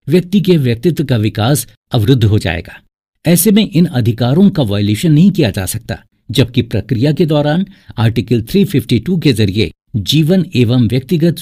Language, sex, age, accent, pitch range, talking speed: Hindi, male, 60-79, native, 110-155 Hz, 150 wpm